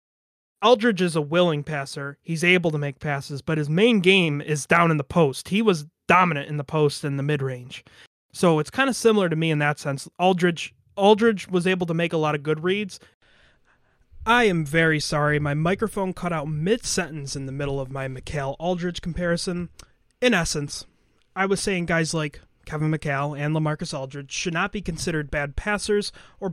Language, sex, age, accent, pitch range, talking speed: English, male, 20-39, American, 145-180 Hz, 190 wpm